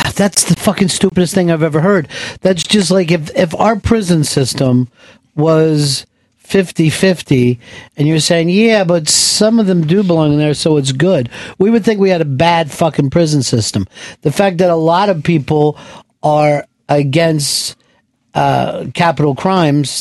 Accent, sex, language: American, male, English